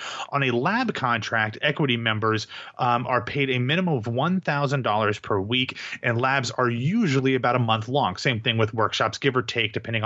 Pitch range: 115-140 Hz